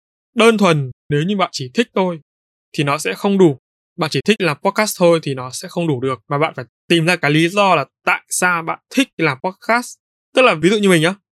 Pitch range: 140-190 Hz